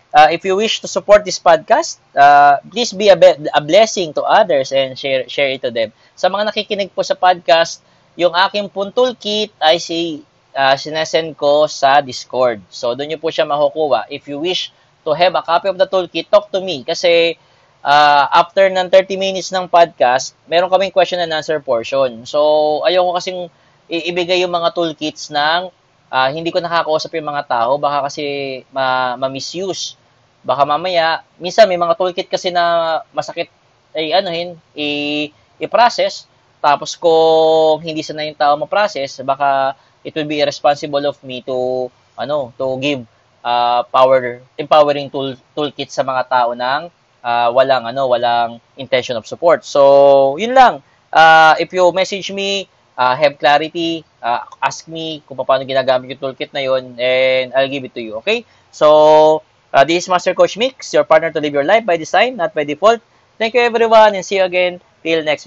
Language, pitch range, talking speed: English, 135-180 Hz, 180 wpm